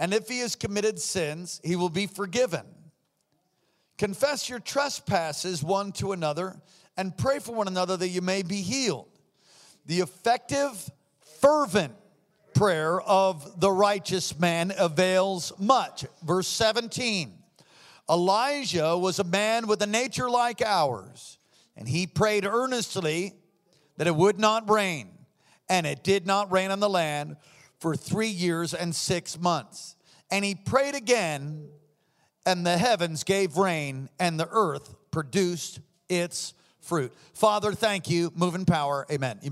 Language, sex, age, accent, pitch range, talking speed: English, male, 50-69, American, 155-195 Hz, 140 wpm